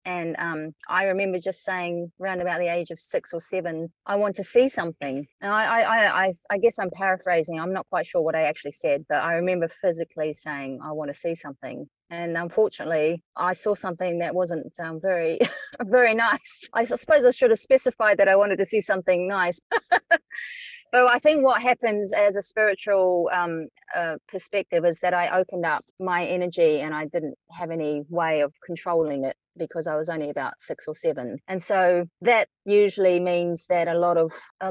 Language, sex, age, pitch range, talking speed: English, female, 30-49, 170-200 Hz, 195 wpm